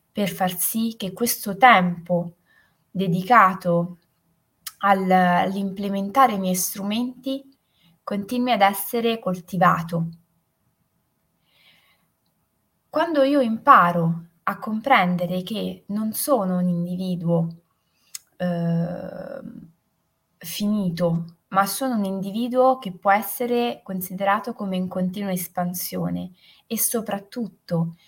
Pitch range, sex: 180-230 Hz, female